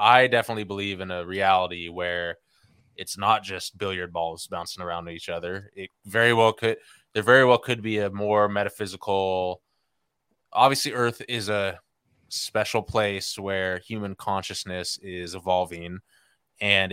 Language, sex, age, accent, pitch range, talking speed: English, male, 20-39, American, 90-105 Hz, 140 wpm